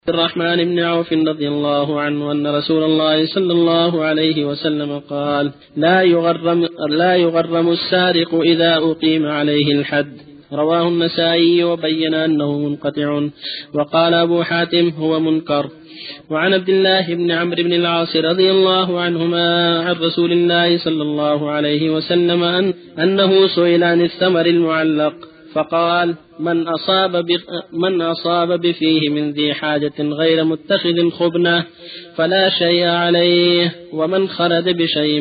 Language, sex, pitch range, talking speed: Arabic, male, 150-175 Hz, 130 wpm